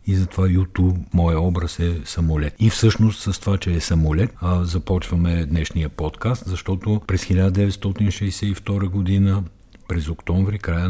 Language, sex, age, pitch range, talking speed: Bulgarian, male, 60-79, 75-95 Hz, 130 wpm